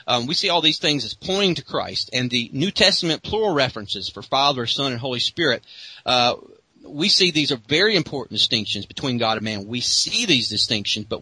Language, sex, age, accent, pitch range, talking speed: English, male, 40-59, American, 120-155 Hz, 210 wpm